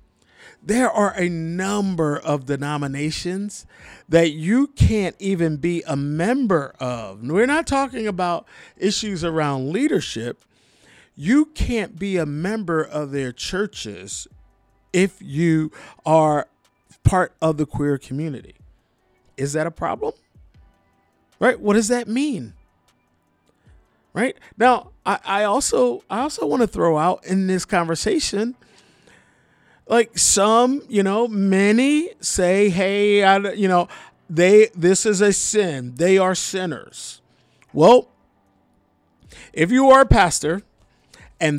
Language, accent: English, American